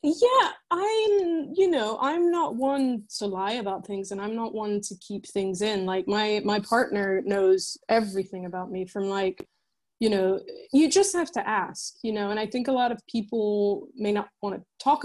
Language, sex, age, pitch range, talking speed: English, female, 20-39, 190-235 Hz, 200 wpm